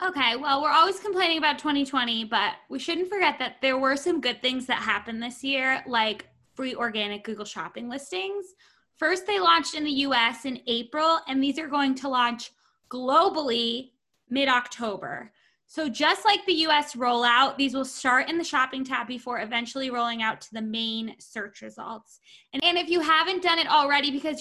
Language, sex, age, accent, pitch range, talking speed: English, female, 10-29, American, 230-300 Hz, 180 wpm